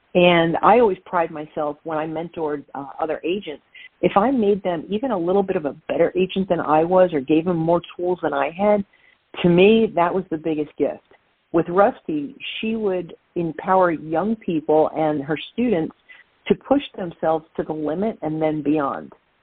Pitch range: 155-190 Hz